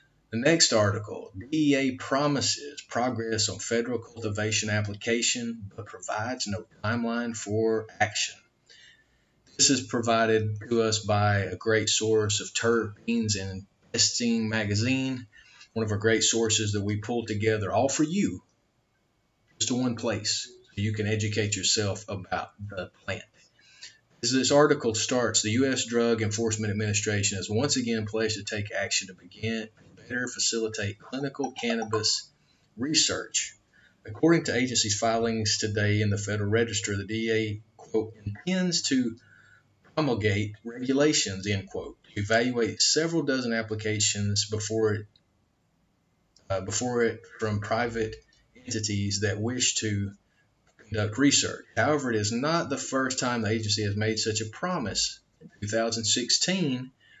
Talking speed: 135 wpm